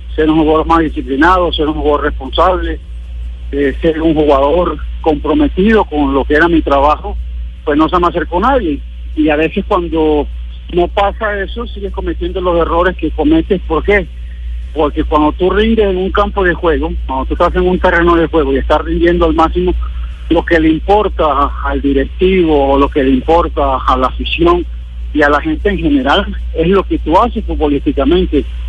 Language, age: Spanish, 50-69